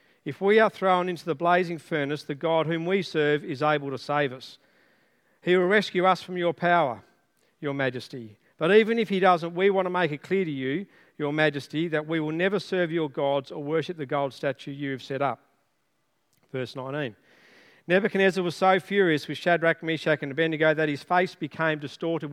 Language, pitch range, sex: English, 145-180 Hz, male